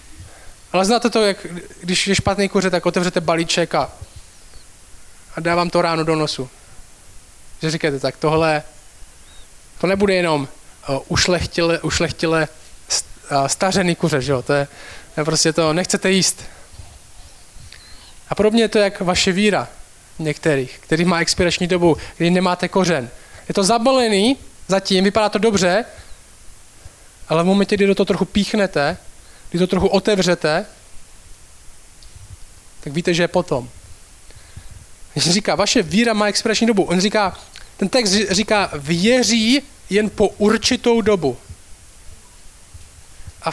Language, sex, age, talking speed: Czech, male, 20-39, 130 wpm